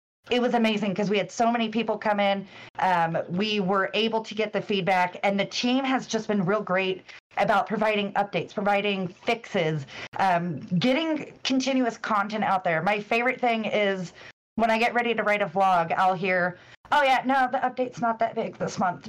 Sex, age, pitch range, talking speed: female, 30-49, 190-240 Hz, 195 wpm